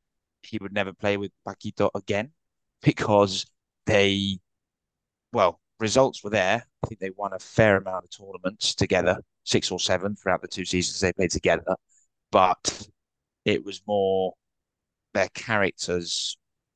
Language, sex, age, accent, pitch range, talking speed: English, male, 20-39, British, 95-110 Hz, 140 wpm